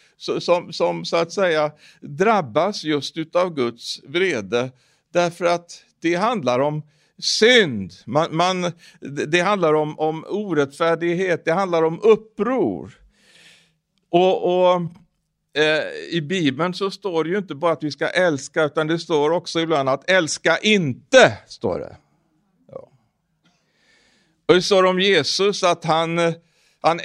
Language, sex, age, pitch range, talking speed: Swedish, male, 60-79, 150-190 Hz, 125 wpm